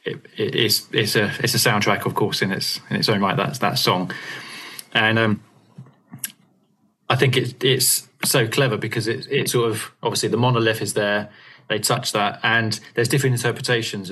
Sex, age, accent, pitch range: male, 20-39, British, 105-125 Hz